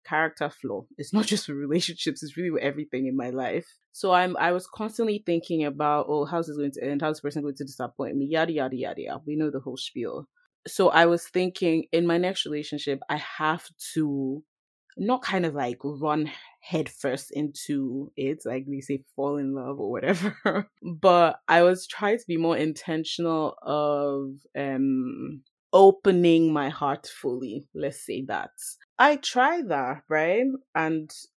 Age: 20-39